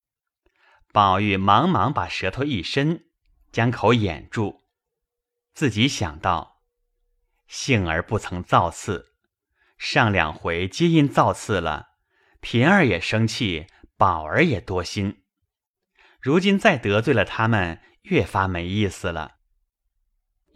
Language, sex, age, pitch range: Chinese, male, 30-49, 90-140 Hz